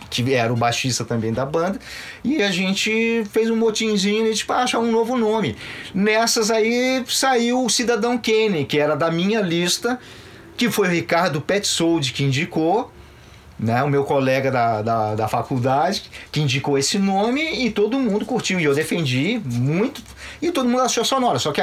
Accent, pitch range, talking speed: Brazilian, 140-220 Hz, 180 wpm